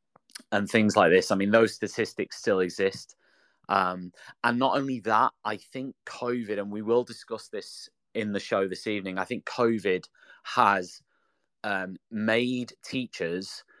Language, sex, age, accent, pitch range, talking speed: English, male, 30-49, British, 90-115 Hz, 150 wpm